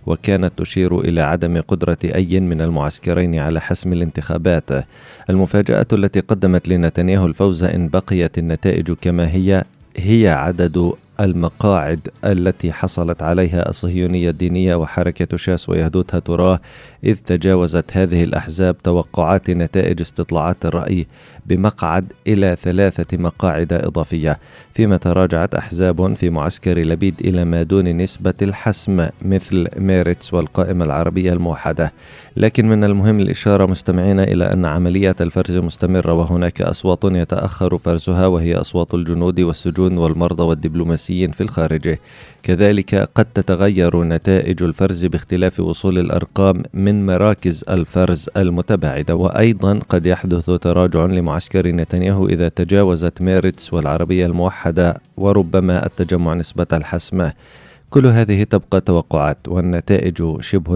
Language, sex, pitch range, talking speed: Arabic, male, 85-95 Hz, 115 wpm